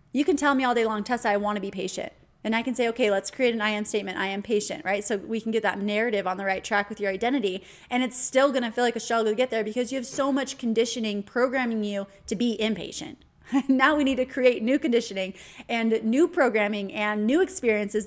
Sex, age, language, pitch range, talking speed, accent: female, 20-39, English, 210-255 Hz, 255 wpm, American